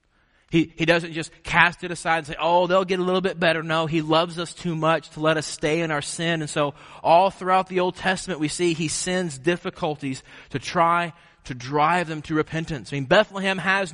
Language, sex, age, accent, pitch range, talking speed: English, male, 30-49, American, 140-175 Hz, 225 wpm